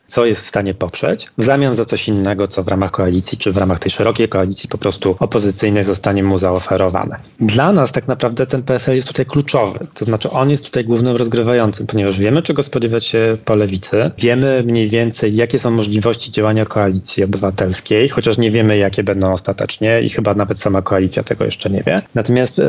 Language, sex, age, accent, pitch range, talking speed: Polish, male, 30-49, native, 105-130 Hz, 195 wpm